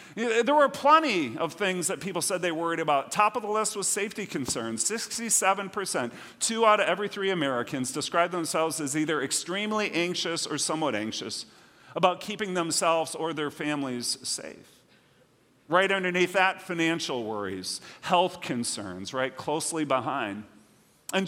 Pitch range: 145-195 Hz